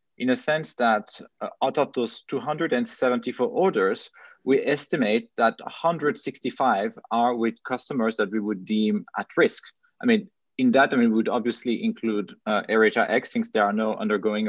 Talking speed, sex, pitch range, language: 165 wpm, male, 110-155 Hz, English